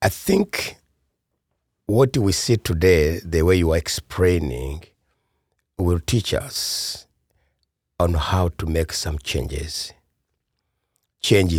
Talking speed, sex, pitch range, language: 110 wpm, male, 75-95 Hz, English